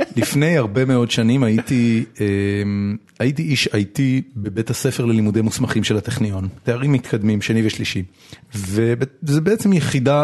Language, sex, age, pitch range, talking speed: Hebrew, male, 30-49, 105-130 Hz, 125 wpm